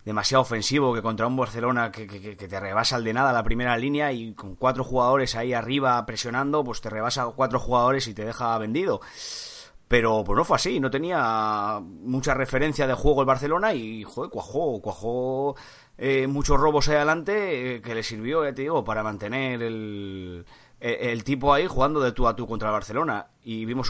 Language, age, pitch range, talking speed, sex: Spanish, 30-49, 110-140 Hz, 195 wpm, male